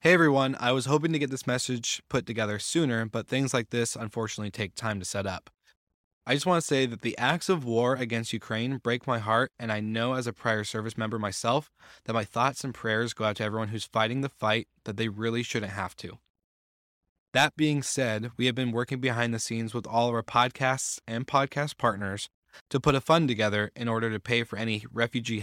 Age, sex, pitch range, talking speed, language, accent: 20-39, male, 110-125 Hz, 225 wpm, English, American